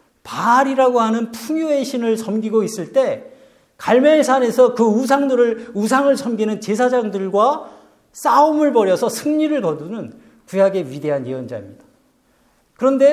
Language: Korean